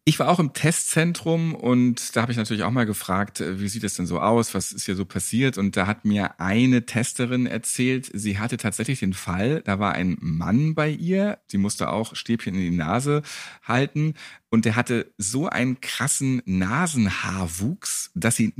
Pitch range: 100-135 Hz